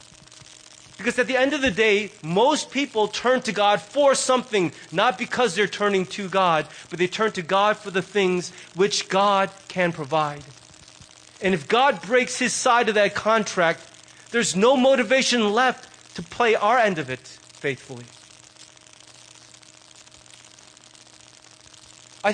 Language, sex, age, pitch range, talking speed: English, male, 30-49, 155-225 Hz, 140 wpm